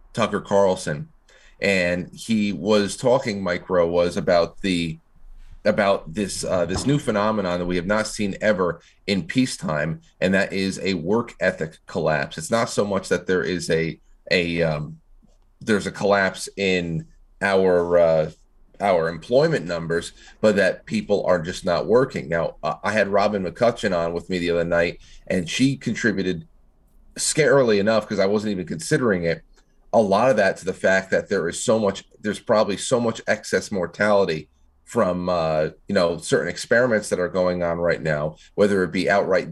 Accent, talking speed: American, 170 wpm